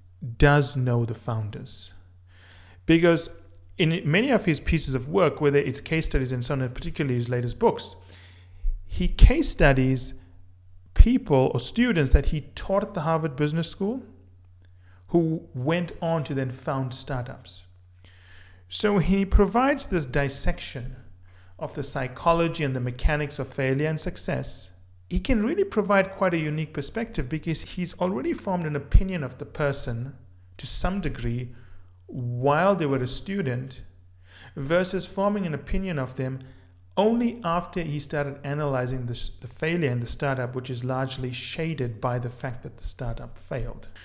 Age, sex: 40-59, male